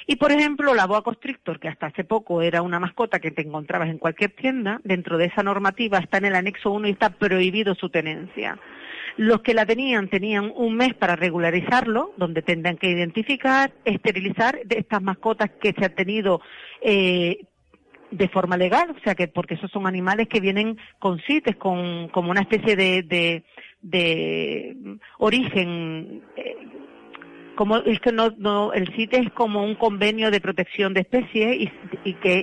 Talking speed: 180 wpm